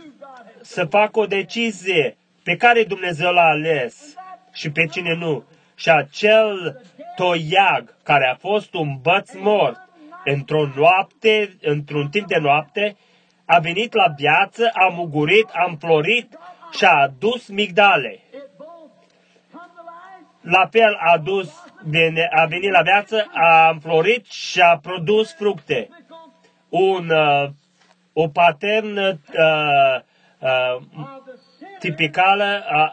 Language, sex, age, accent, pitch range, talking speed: Romanian, male, 30-49, native, 165-220 Hz, 115 wpm